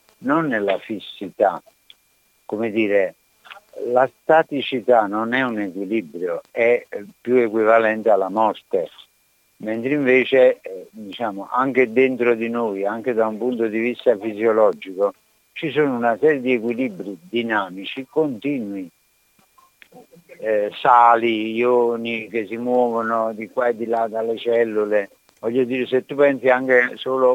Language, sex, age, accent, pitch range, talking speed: Italian, male, 60-79, native, 110-140 Hz, 130 wpm